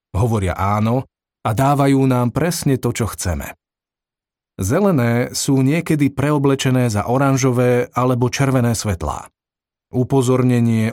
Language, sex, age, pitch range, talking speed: Slovak, male, 40-59, 100-135 Hz, 105 wpm